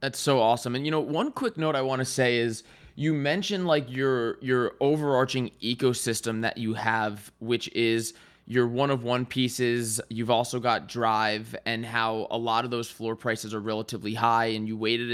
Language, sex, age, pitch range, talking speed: English, male, 20-39, 115-130 Hz, 195 wpm